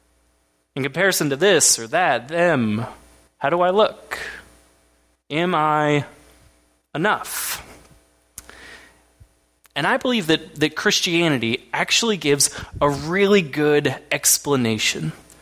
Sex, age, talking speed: male, 20-39, 100 wpm